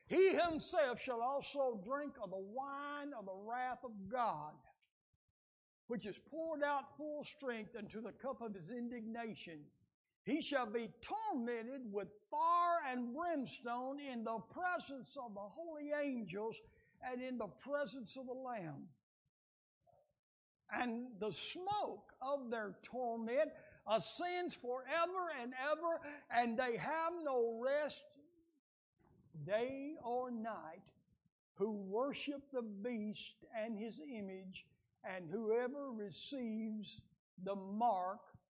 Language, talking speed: English, 120 wpm